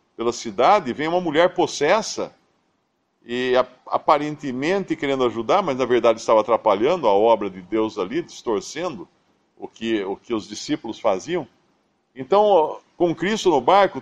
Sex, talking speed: male, 140 wpm